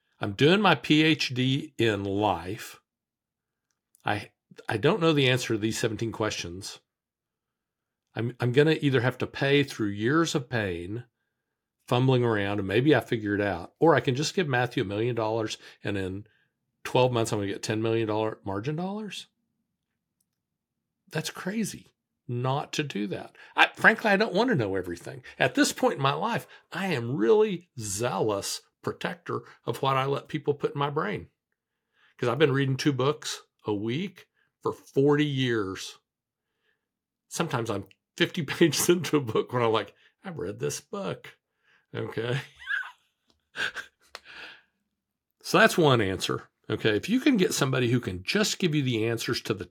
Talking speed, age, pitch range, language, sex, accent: 160 wpm, 50-69, 110-155 Hz, English, male, American